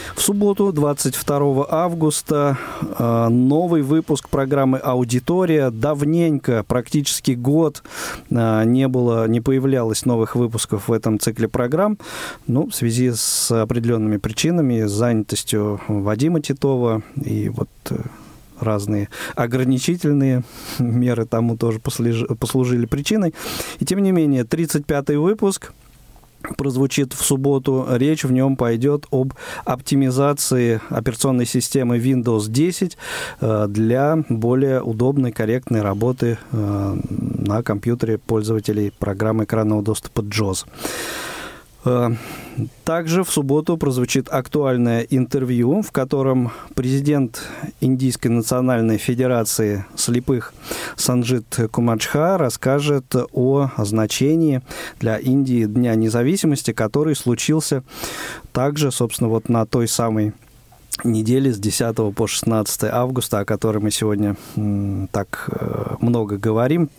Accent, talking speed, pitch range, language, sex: native, 105 wpm, 110-140 Hz, Russian, male